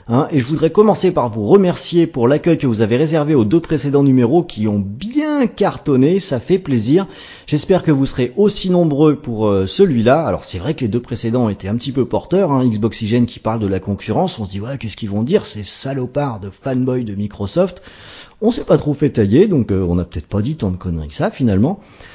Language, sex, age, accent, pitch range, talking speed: French, male, 40-59, French, 110-170 Hz, 235 wpm